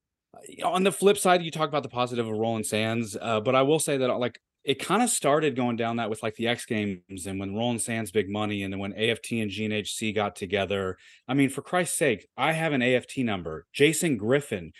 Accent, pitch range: American, 110-140 Hz